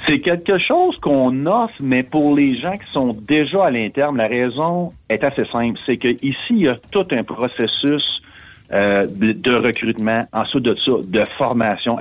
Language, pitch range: French, 95-135 Hz